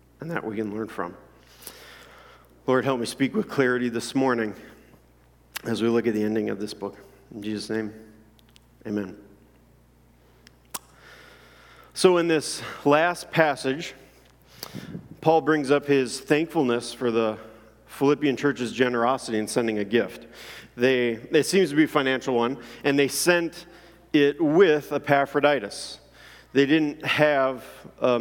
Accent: American